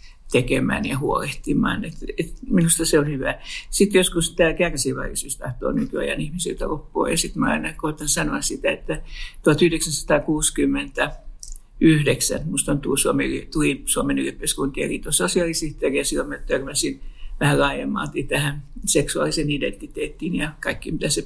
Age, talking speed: 60-79, 135 wpm